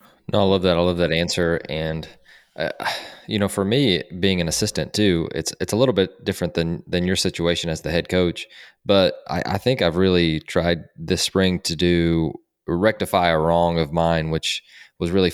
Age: 20-39